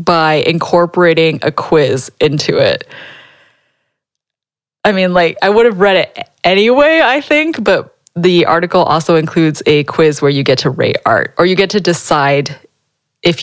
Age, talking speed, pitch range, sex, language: 20-39, 160 wpm, 150-180 Hz, female, English